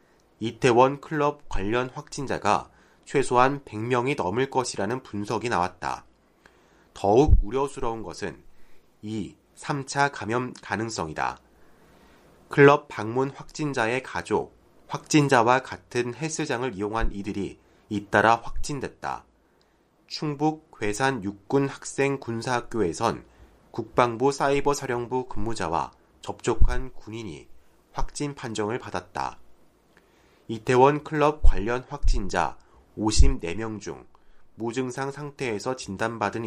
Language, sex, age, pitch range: Korean, male, 30-49, 105-140 Hz